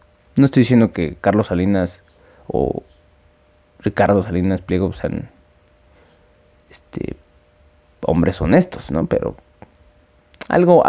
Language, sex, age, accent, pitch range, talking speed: Spanish, male, 20-39, Mexican, 90-115 Hz, 90 wpm